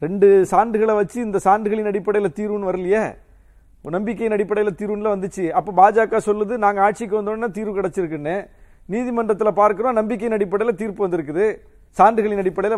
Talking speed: 130 wpm